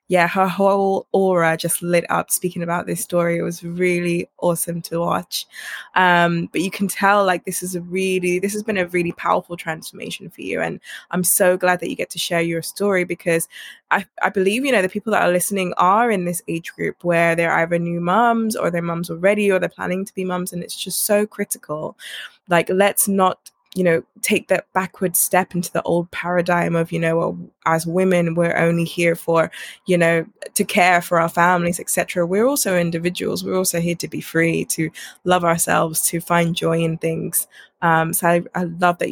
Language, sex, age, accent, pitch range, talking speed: English, female, 20-39, British, 170-190 Hz, 210 wpm